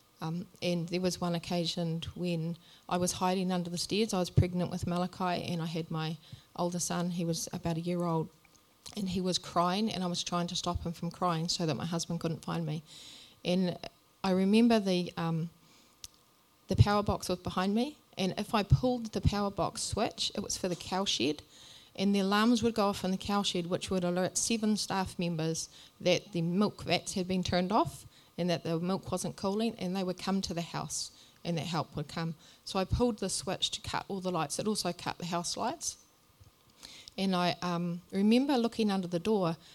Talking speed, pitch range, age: 215 wpm, 170-190 Hz, 30-49